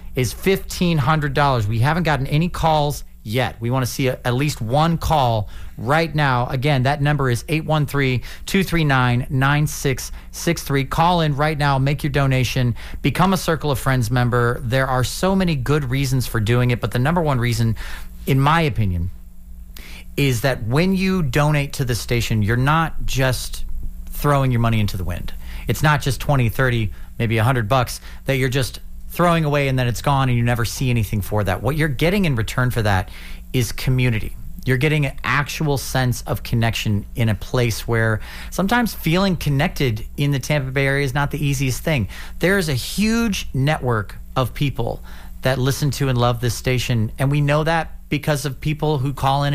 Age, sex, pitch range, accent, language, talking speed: 40-59, male, 115-150 Hz, American, English, 185 wpm